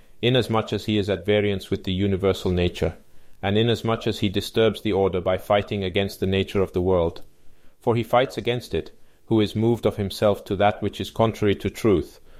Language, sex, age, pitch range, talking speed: English, male, 30-49, 100-115 Hz, 205 wpm